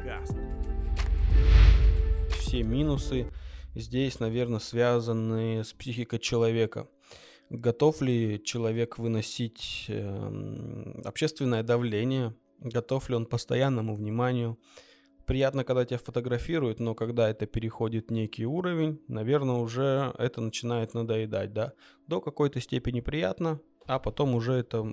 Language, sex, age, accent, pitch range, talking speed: Russian, male, 20-39, native, 110-125 Hz, 105 wpm